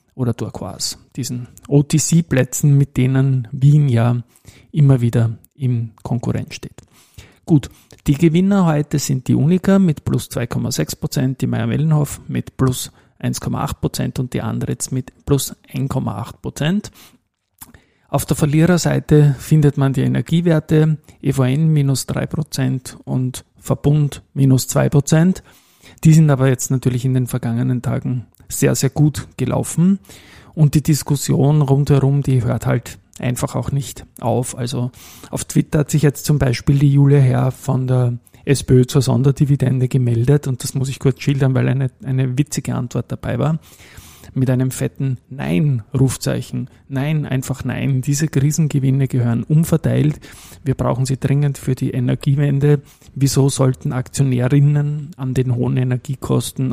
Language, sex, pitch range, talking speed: German, male, 125-145 Hz, 135 wpm